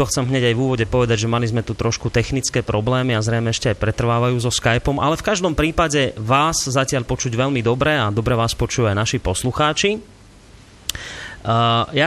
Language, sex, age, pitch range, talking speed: Slovak, male, 30-49, 115-140 Hz, 185 wpm